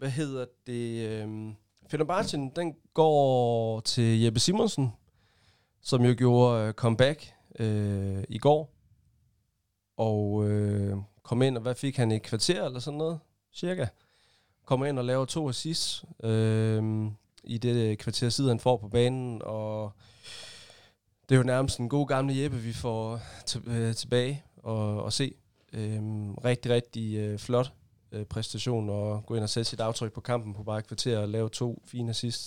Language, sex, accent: Danish, male, native